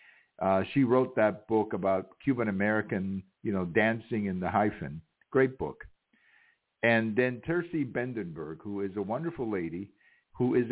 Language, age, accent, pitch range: English, 60-79, American, 95-115 Hz